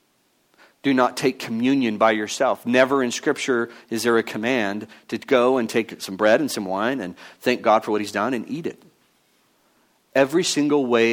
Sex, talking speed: male, 190 wpm